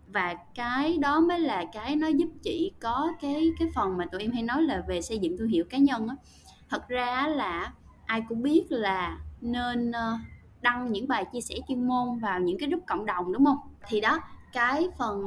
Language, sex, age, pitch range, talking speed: Vietnamese, female, 20-39, 195-300 Hz, 210 wpm